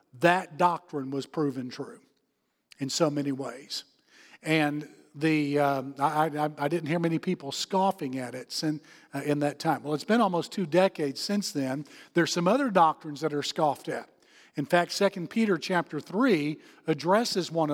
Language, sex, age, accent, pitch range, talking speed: English, male, 50-69, American, 150-185 Hz, 175 wpm